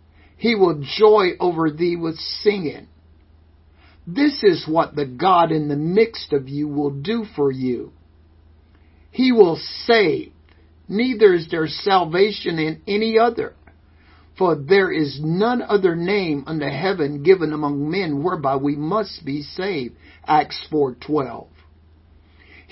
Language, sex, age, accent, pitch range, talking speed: English, male, 50-69, American, 130-185 Hz, 130 wpm